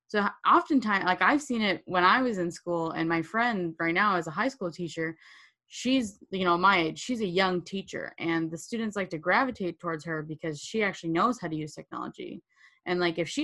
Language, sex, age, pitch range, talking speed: English, female, 20-39, 170-210 Hz, 225 wpm